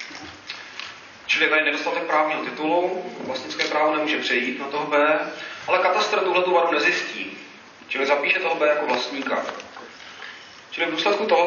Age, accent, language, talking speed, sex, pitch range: 40-59, native, Czech, 140 wpm, male, 145-170 Hz